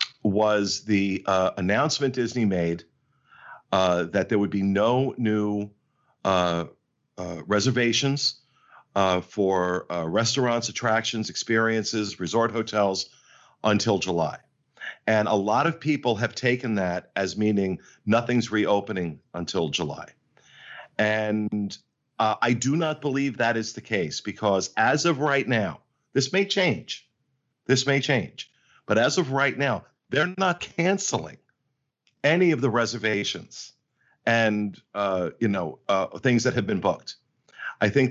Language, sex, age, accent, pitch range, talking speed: English, male, 50-69, American, 100-130 Hz, 135 wpm